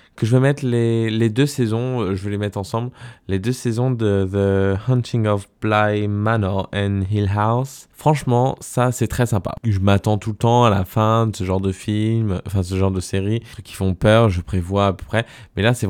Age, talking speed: 20-39, 225 wpm